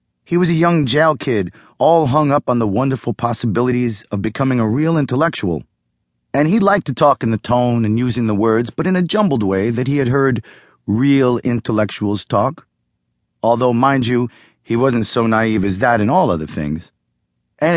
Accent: American